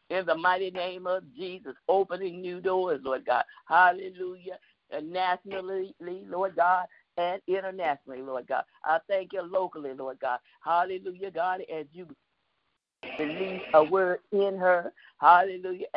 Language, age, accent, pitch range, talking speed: English, 50-69, American, 155-190 Hz, 130 wpm